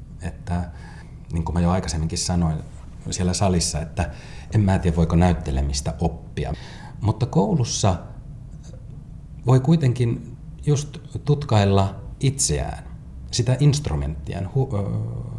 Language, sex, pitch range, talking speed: Finnish, male, 80-120 Hz, 105 wpm